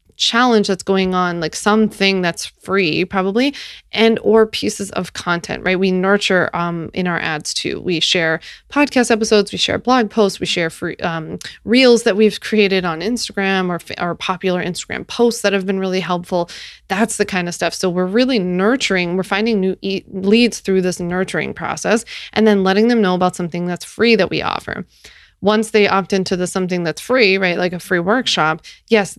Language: English